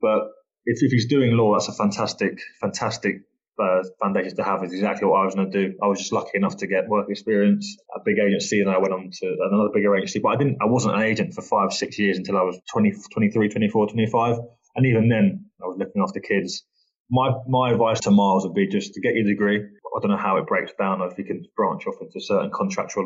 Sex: male